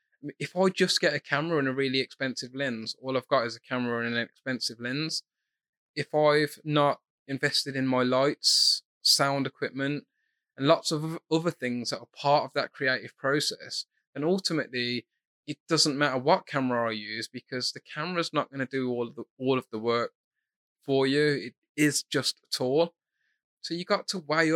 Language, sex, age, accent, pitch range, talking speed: English, male, 10-29, British, 130-150 Hz, 190 wpm